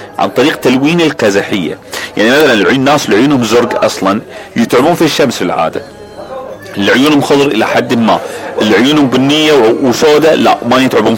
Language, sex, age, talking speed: Arabic, male, 40-59, 140 wpm